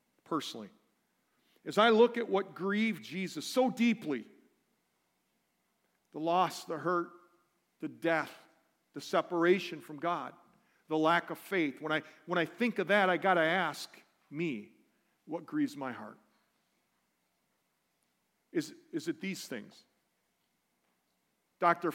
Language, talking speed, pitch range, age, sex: English, 125 wpm, 155-225 Hz, 50-69, male